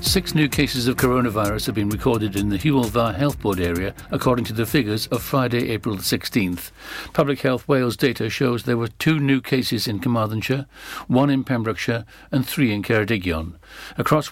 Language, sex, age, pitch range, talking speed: English, male, 60-79, 110-135 Hz, 175 wpm